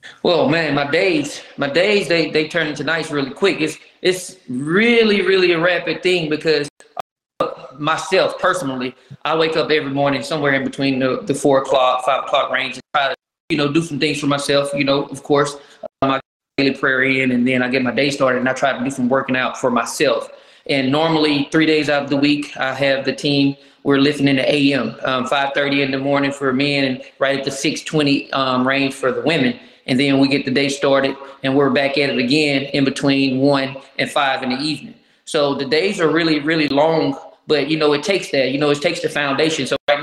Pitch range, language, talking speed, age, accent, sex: 135-165 Hz, English, 225 wpm, 20-39, American, male